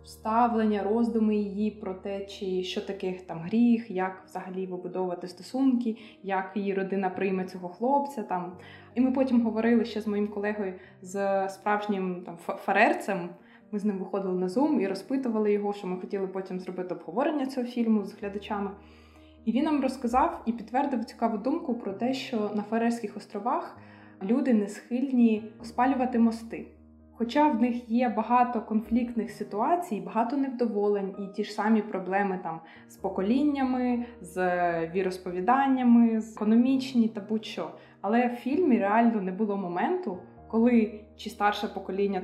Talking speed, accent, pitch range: 150 wpm, native, 190-230 Hz